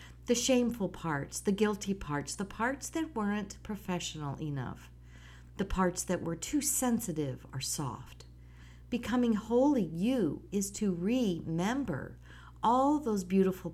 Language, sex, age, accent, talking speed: English, female, 50-69, American, 125 wpm